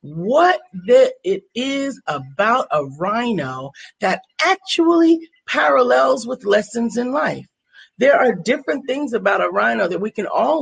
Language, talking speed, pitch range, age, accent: English, 135 wpm, 160-255 Hz, 40-59, American